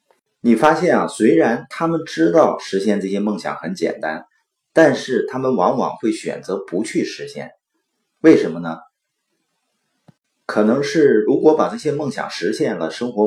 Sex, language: male, Chinese